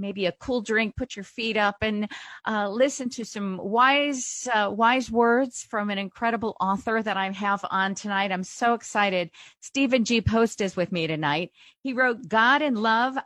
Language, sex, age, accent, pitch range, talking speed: English, female, 40-59, American, 175-225 Hz, 185 wpm